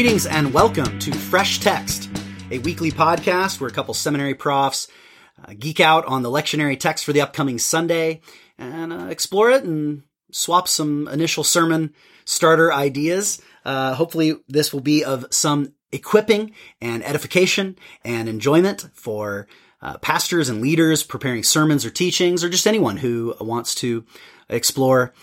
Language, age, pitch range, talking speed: English, 30-49, 120-165 Hz, 150 wpm